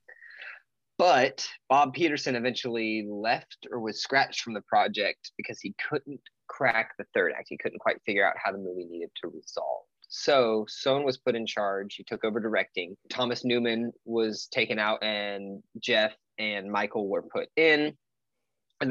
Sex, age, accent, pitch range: male, 20-39, American, 105-130 Hz